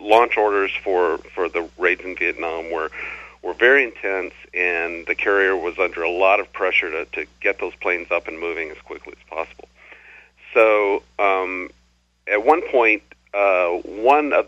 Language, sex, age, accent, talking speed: English, male, 50-69, American, 170 wpm